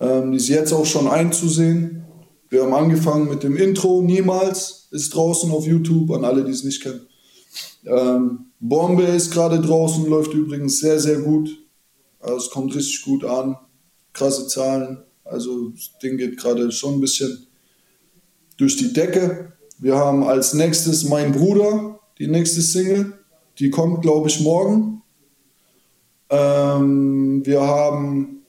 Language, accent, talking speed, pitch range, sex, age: German, German, 145 wpm, 140-175 Hz, male, 20-39